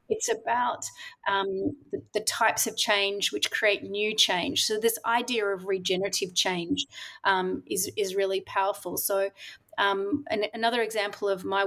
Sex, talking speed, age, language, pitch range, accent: female, 150 wpm, 30-49, English, 195-245 Hz, Australian